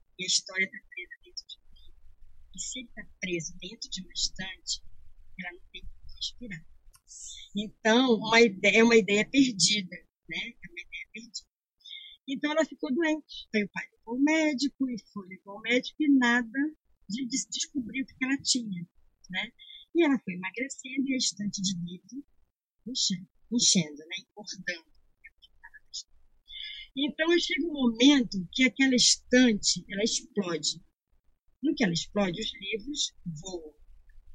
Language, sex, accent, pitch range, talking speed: Portuguese, female, Brazilian, 190-280 Hz, 150 wpm